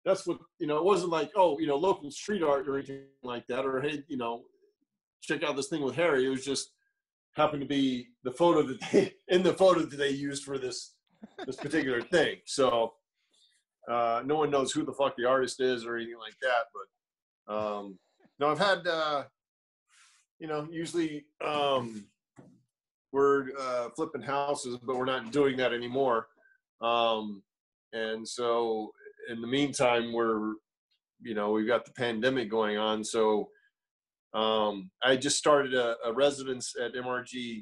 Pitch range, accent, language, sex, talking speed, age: 110-140 Hz, American, English, male, 170 wpm, 40-59